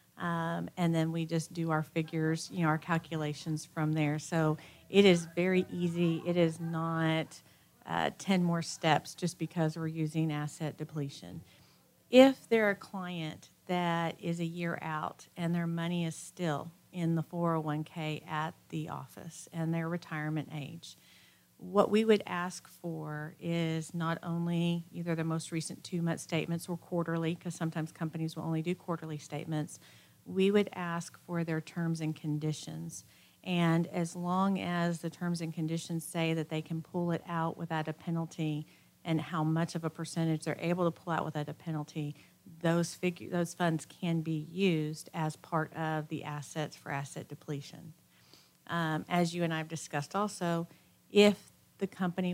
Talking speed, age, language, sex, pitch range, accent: 165 wpm, 50-69, English, female, 155-175 Hz, American